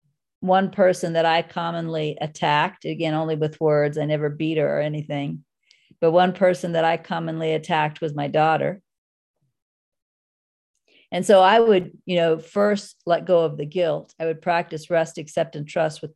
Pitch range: 155-185 Hz